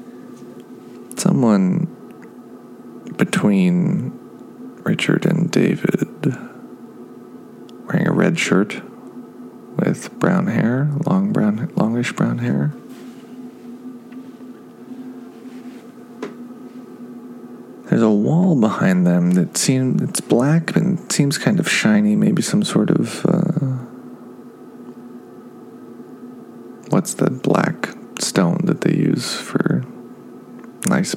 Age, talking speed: 40-59, 85 wpm